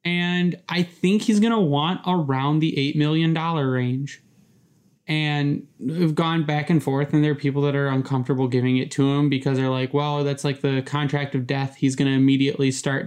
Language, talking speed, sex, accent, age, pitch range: English, 205 wpm, male, American, 20-39, 135-160 Hz